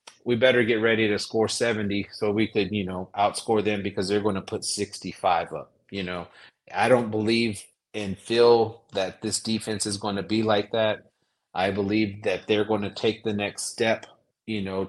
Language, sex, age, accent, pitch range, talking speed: English, male, 30-49, American, 100-115 Hz, 200 wpm